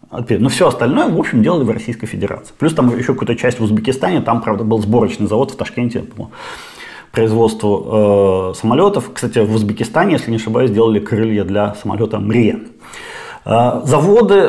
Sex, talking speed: male, 165 wpm